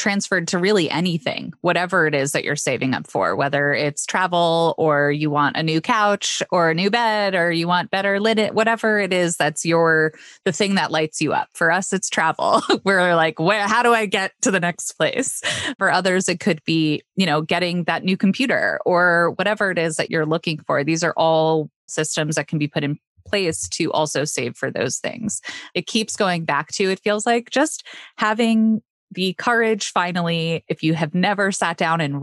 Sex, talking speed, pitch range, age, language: female, 210 wpm, 160-200 Hz, 20-39, English